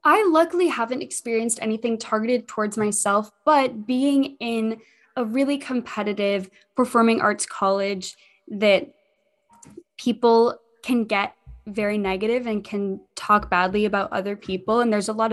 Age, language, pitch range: 20-39, English, 200-240 Hz